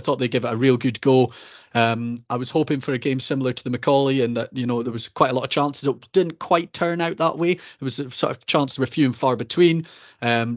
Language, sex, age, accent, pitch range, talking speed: English, male, 30-49, British, 115-140 Hz, 285 wpm